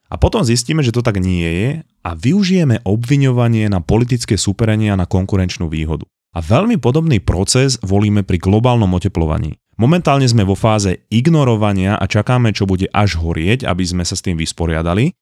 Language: Slovak